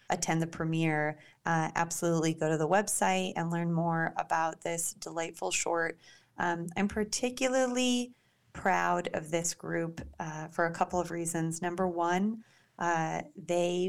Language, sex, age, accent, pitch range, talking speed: English, female, 30-49, American, 165-185 Hz, 145 wpm